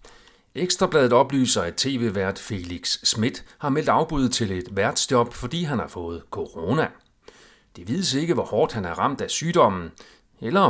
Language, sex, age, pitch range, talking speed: Danish, male, 40-59, 95-125 Hz, 155 wpm